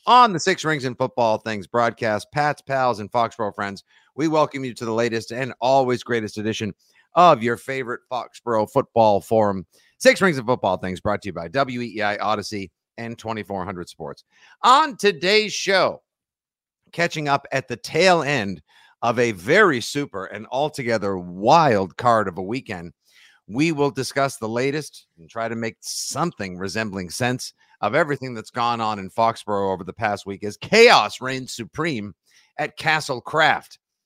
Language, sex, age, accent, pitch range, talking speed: English, male, 50-69, American, 110-145 Hz, 165 wpm